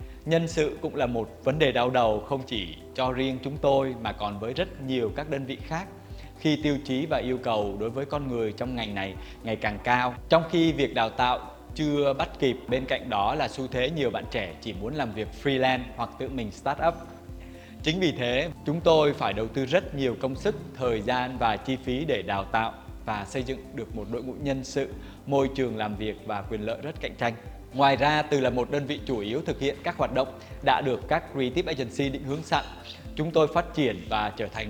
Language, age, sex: Vietnamese, 20-39, male